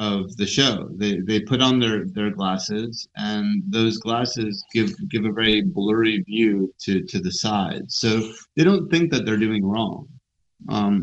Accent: American